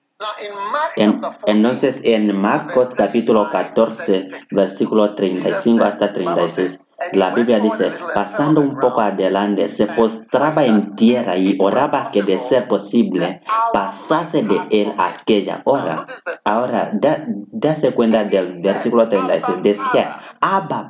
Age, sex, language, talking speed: 30-49, male, Spanish, 120 wpm